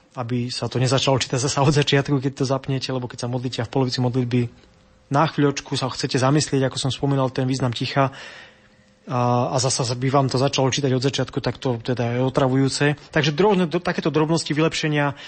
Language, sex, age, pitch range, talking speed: Slovak, male, 20-39, 130-145 Hz, 195 wpm